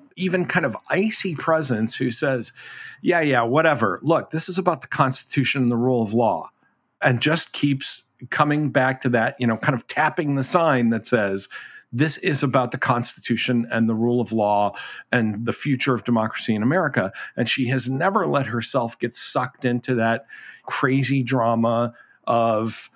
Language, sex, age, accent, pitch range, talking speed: English, male, 50-69, American, 120-155 Hz, 175 wpm